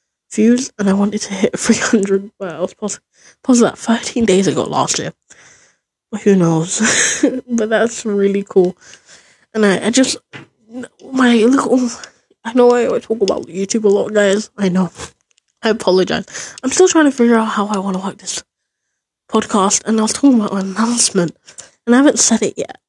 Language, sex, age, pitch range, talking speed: English, female, 10-29, 195-235 Hz, 180 wpm